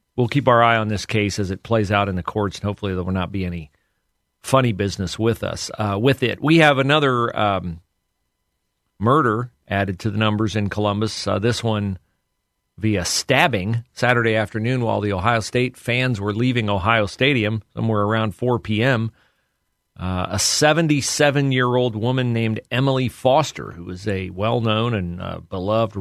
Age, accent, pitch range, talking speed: 40-59, American, 100-120 Hz, 165 wpm